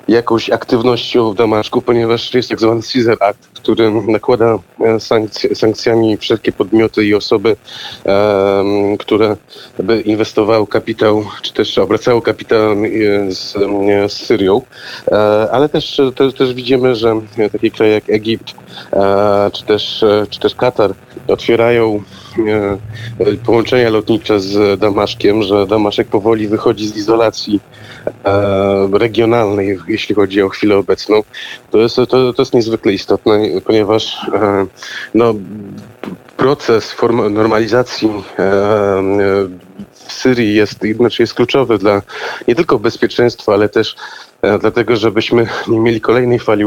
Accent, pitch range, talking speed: native, 100-115 Hz, 110 wpm